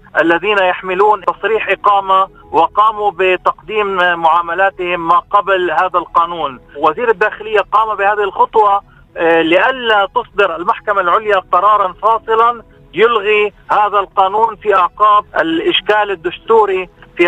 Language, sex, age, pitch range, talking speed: Arabic, male, 40-59, 175-210 Hz, 105 wpm